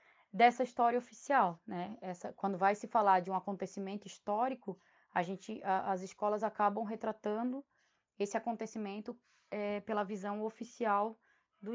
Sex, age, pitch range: female, 10-29, 190-230 Hz